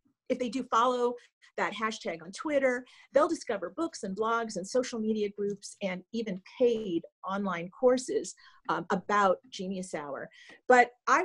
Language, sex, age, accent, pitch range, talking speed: English, female, 50-69, American, 190-245 Hz, 150 wpm